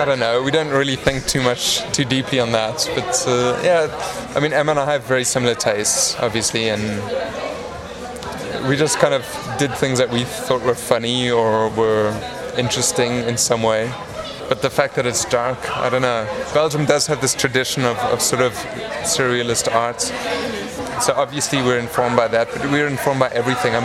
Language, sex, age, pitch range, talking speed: English, male, 20-39, 115-130 Hz, 190 wpm